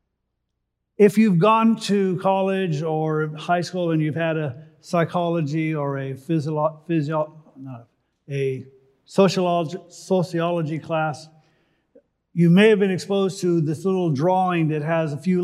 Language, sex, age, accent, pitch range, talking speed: English, male, 50-69, American, 155-195 Hz, 120 wpm